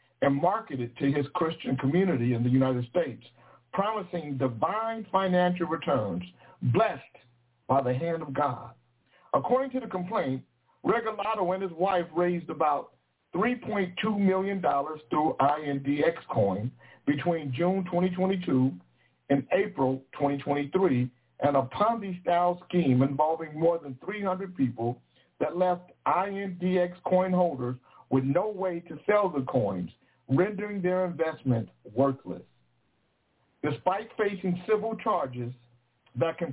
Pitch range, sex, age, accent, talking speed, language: 130-190 Hz, male, 60-79, American, 120 wpm, English